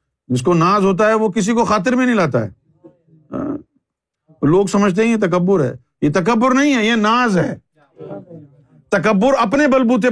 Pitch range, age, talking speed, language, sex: 145-225 Hz, 50-69, 170 wpm, Urdu, male